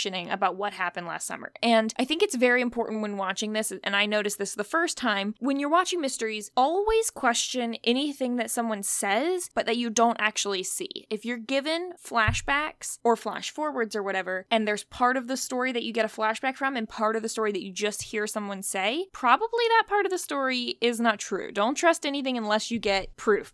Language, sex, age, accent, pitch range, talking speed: English, female, 20-39, American, 205-260 Hz, 215 wpm